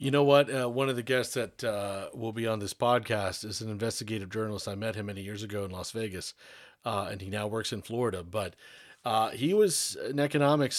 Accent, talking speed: American, 230 wpm